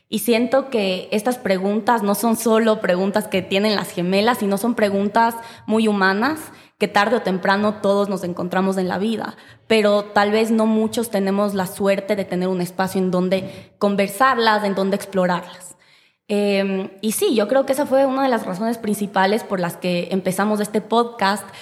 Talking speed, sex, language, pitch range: 180 wpm, female, Spanish, 185-215 Hz